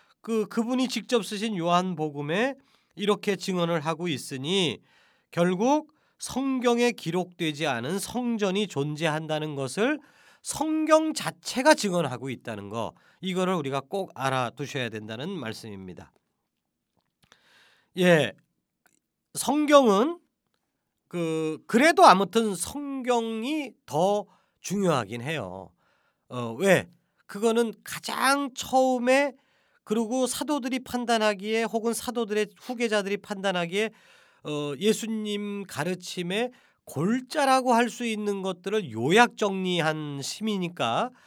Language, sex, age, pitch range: Korean, male, 40-59, 160-245 Hz